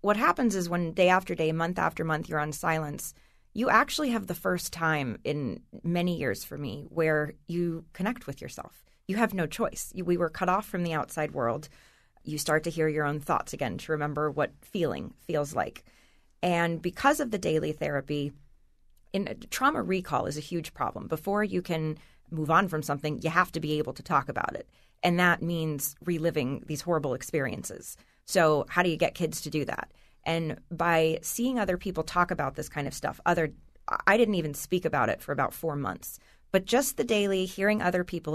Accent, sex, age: American, female, 30-49